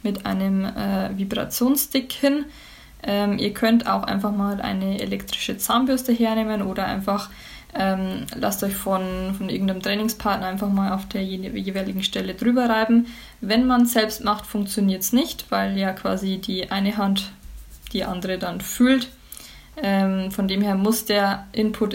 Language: German